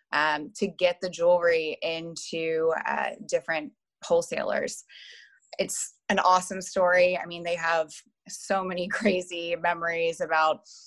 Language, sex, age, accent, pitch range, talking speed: English, female, 20-39, American, 165-185 Hz, 120 wpm